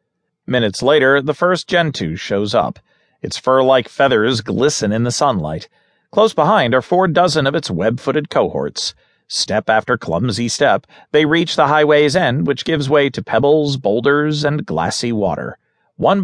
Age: 40-59